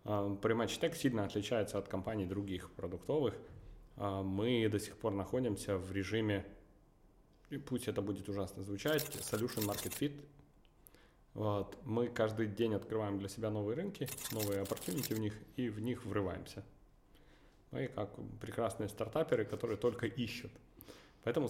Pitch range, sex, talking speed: 100-120 Hz, male, 135 wpm